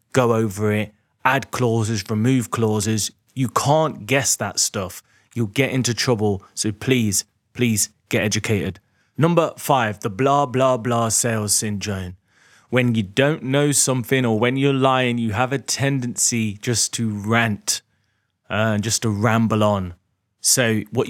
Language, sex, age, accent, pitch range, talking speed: English, male, 20-39, British, 105-135 Hz, 150 wpm